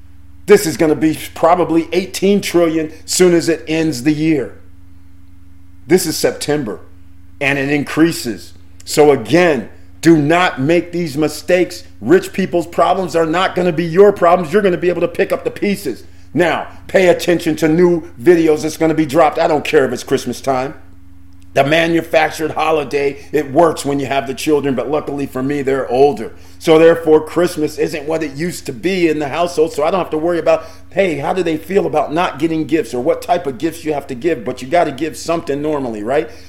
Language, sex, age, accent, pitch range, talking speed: English, male, 40-59, American, 120-165 Hz, 205 wpm